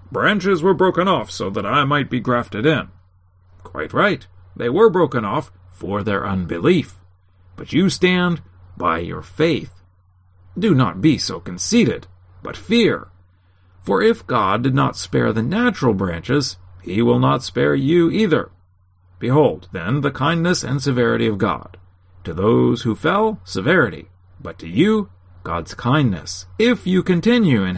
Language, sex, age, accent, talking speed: English, male, 40-59, American, 150 wpm